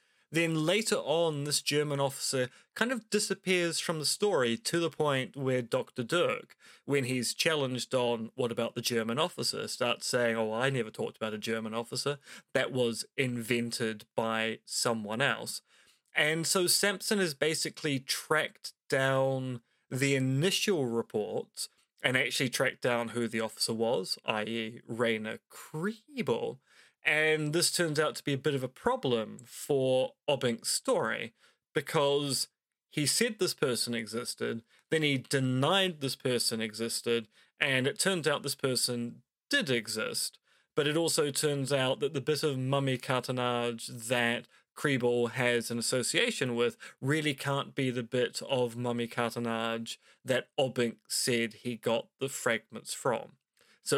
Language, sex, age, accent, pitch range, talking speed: English, male, 20-39, British, 120-155 Hz, 145 wpm